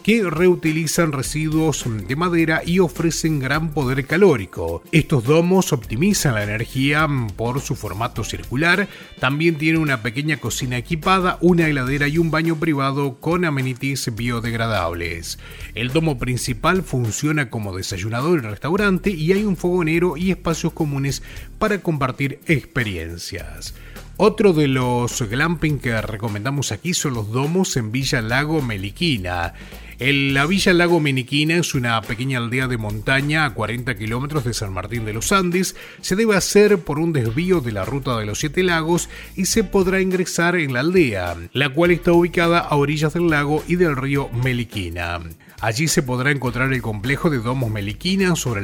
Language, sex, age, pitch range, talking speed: Spanish, male, 30-49, 120-170 Hz, 155 wpm